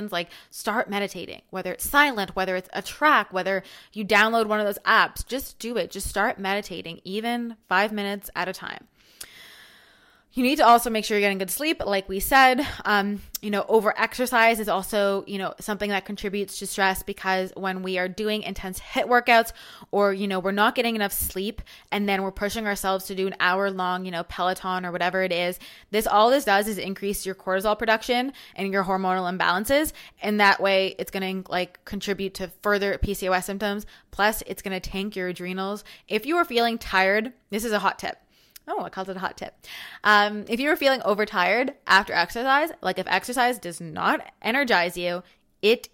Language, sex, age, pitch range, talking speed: English, female, 20-39, 190-220 Hz, 200 wpm